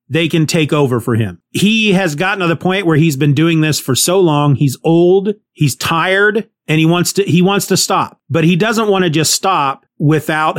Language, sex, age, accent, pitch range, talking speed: English, male, 30-49, American, 145-180 Hz, 225 wpm